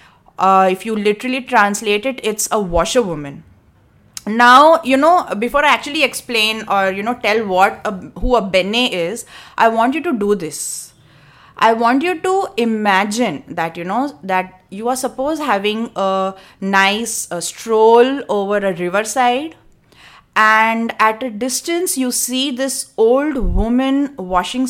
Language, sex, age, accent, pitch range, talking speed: English, female, 30-49, Indian, 195-265 Hz, 150 wpm